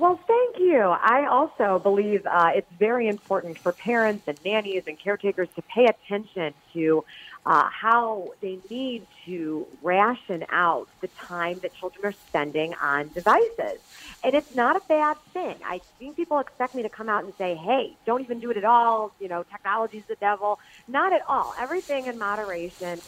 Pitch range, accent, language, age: 180-235 Hz, American, English, 40-59